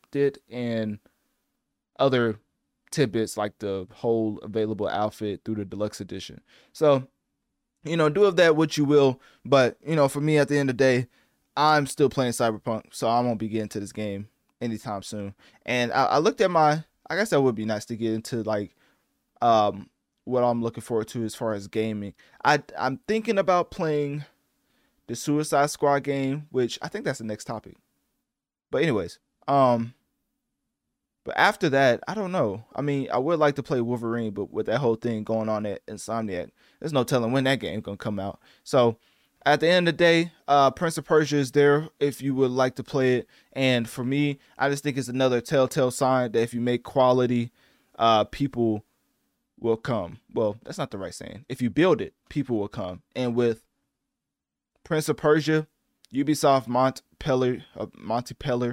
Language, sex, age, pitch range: English, male, 20-39, 110-140 Hz